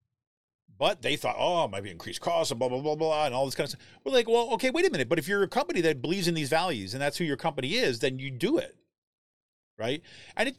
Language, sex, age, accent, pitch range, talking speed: English, male, 40-59, American, 120-175 Hz, 285 wpm